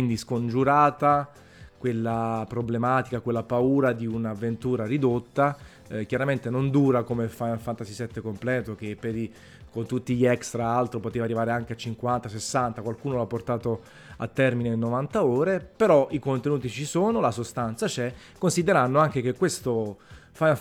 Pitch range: 115-145 Hz